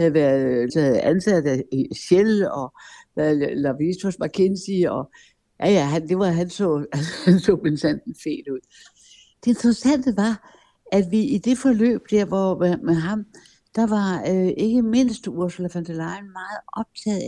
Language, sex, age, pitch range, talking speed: Danish, female, 60-79, 155-205 Hz, 155 wpm